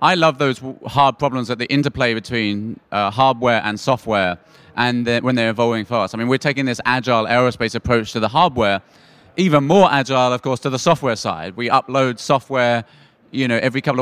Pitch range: 120-150 Hz